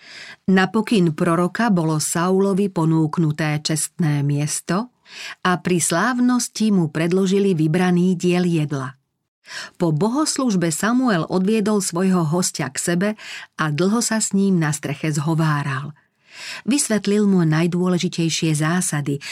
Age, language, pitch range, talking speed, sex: 40-59, Slovak, 155-200 Hz, 110 wpm, female